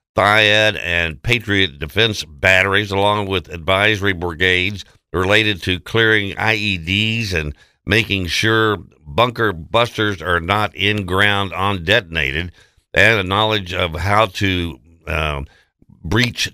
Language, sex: English, male